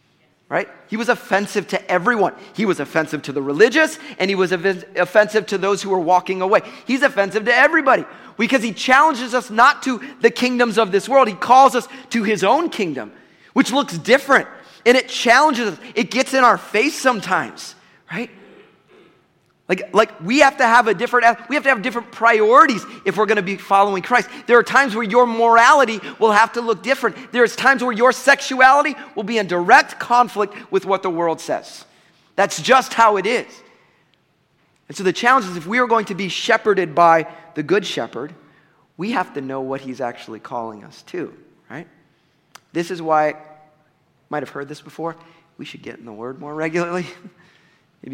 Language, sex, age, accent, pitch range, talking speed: English, male, 30-49, American, 175-245 Hz, 195 wpm